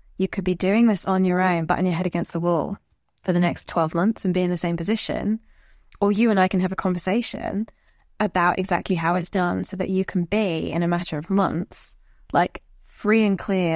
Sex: female